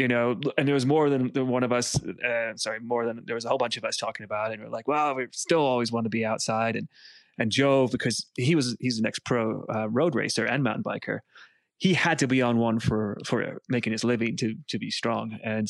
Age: 20-39